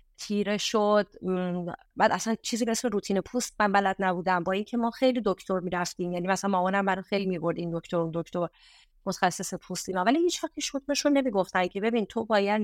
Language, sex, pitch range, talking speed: Persian, female, 180-220 Hz, 195 wpm